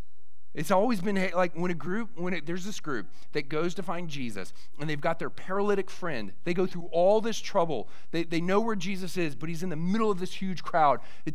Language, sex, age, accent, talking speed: English, male, 40-59, American, 240 wpm